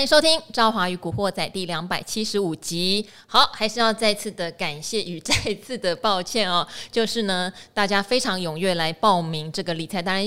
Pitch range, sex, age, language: 175-220 Hz, female, 20-39, Chinese